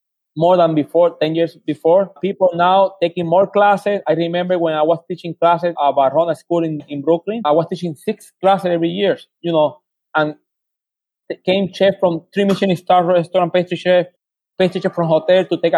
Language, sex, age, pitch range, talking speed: English, male, 30-49, 170-210 Hz, 190 wpm